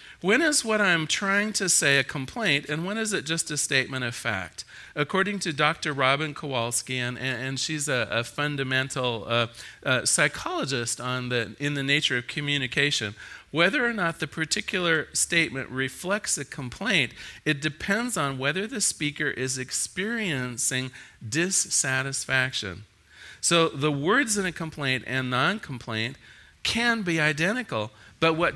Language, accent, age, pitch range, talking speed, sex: English, American, 40-59, 130-170 Hz, 145 wpm, male